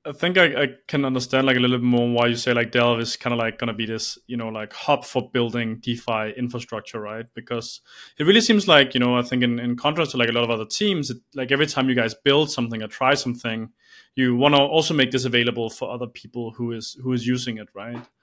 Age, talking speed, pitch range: 20-39, 265 wpm, 120-135 Hz